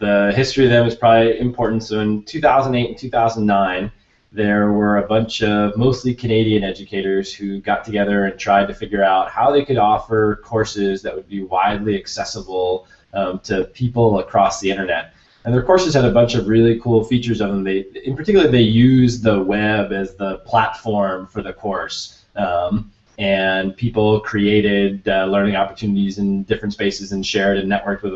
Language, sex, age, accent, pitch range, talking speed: English, male, 20-39, American, 100-120 Hz, 180 wpm